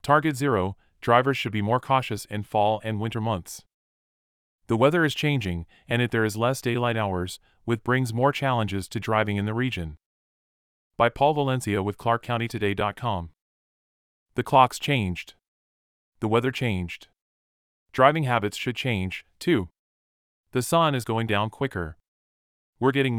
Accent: American